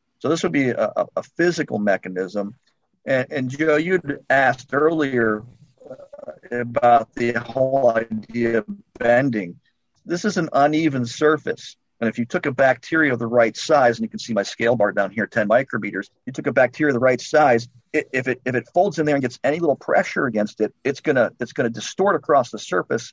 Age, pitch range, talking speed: 50-69, 105-135 Hz, 210 wpm